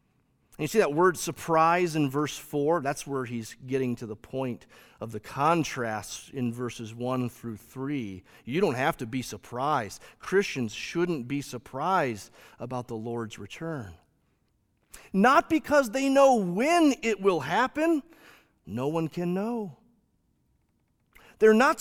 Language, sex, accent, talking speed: English, male, American, 140 wpm